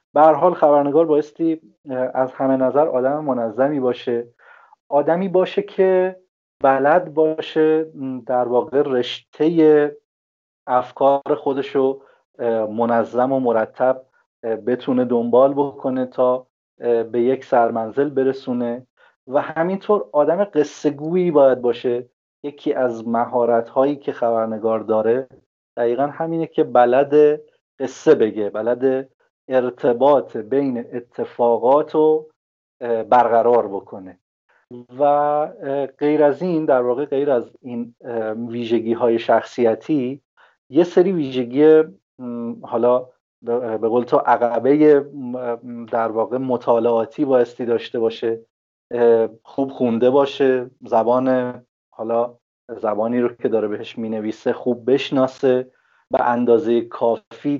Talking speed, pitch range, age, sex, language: 105 wpm, 120-145 Hz, 30-49, male, Persian